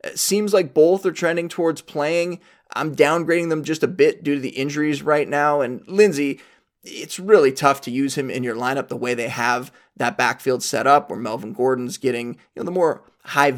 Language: English